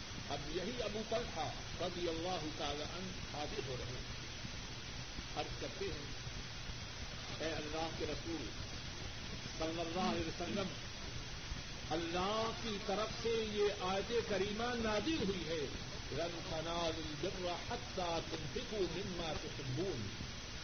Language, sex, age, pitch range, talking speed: Urdu, male, 50-69, 155-230 Hz, 115 wpm